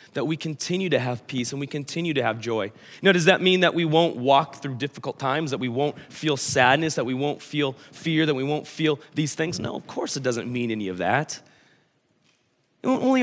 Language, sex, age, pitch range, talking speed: English, male, 30-49, 130-175 Hz, 220 wpm